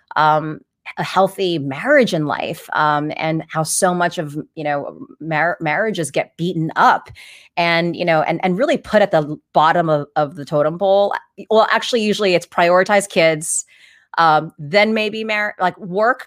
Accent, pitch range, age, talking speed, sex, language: American, 160-220 Hz, 30-49, 170 wpm, female, English